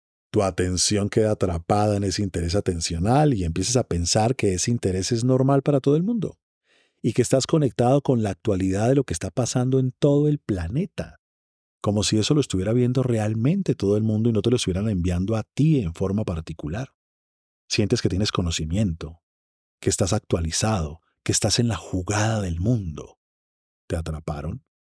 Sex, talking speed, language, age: male, 180 wpm, Spanish, 40-59